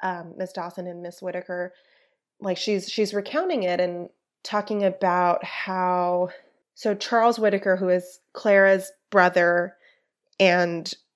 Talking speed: 125 wpm